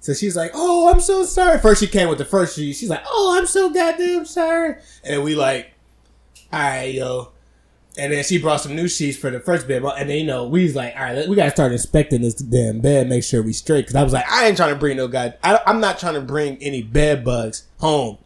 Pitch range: 125-165 Hz